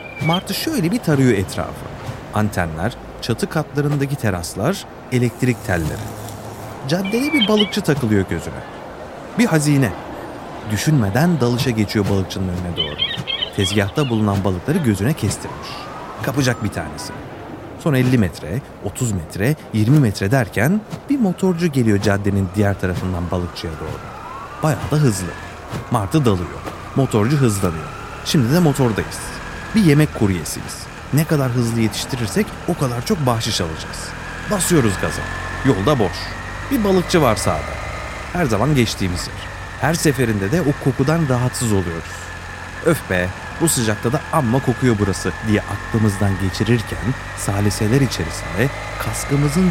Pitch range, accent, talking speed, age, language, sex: 95-145 Hz, native, 125 wpm, 30-49, Turkish, male